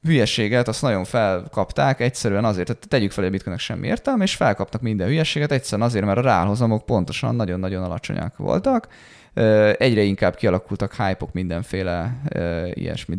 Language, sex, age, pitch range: Hungarian, male, 20-39, 95-130 Hz